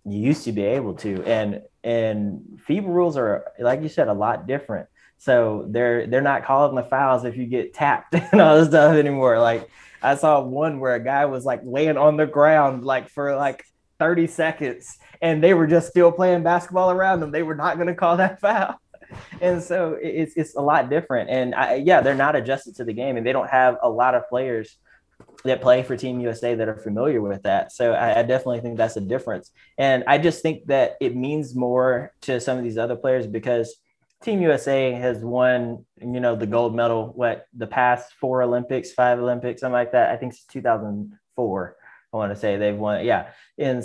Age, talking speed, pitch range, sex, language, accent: 20-39, 215 wpm, 120-155 Hz, male, English, American